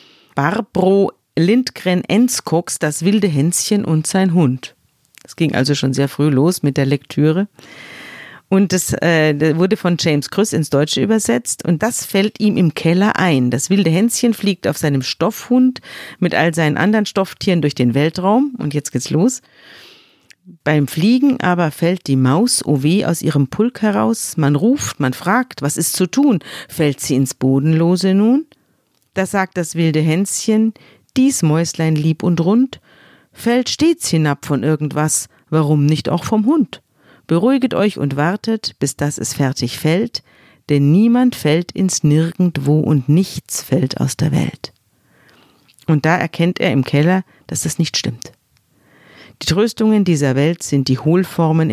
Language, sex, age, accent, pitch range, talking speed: German, female, 50-69, German, 145-195 Hz, 160 wpm